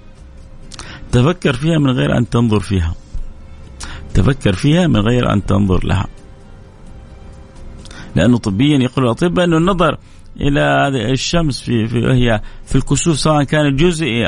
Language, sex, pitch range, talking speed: Arabic, male, 100-135 Hz, 125 wpm